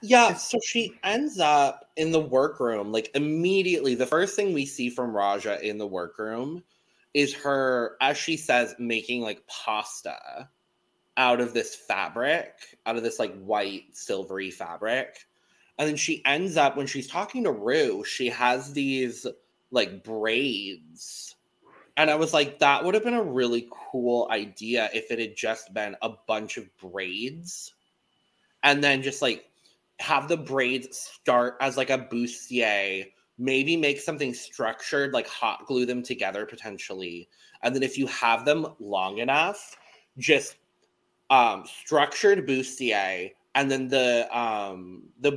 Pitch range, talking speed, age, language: 120-160 Hz, 150 wpm, 20-39, English